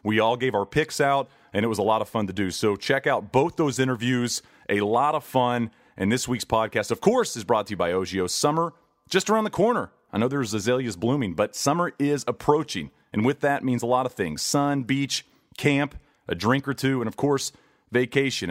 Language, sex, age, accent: English, male, 40-59, American